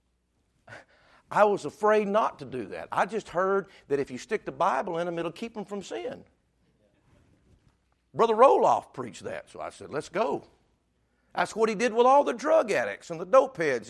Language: English